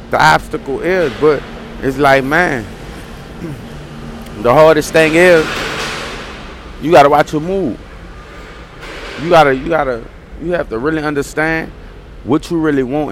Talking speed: 135 wpm